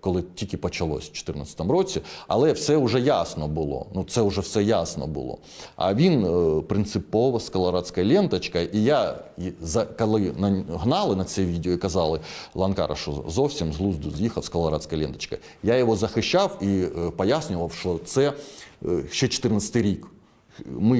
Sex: male